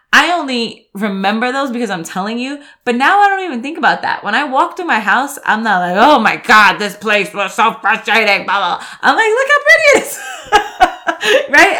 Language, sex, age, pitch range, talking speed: English, female, 20-39, 185-275 Hz, 220 wpm